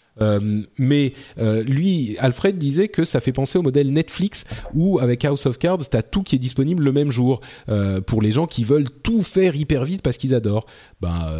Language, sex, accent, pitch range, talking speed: French, male, French, 105-150 Hz, 210 wpm